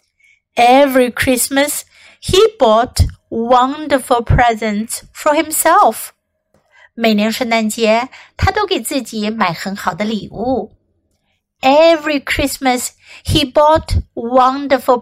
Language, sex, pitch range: Chinese, female, 220-320 Hz